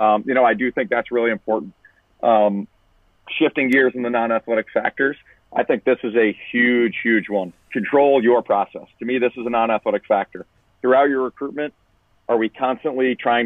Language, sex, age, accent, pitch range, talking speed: English, male, 40-59, American, 105-125 Hz, 185 wpm